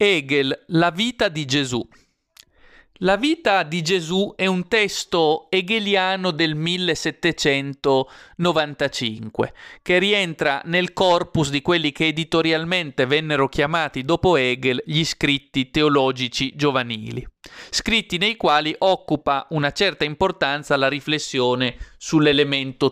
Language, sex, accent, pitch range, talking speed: Italian, male, native, 140-175 Hz, 105 wpm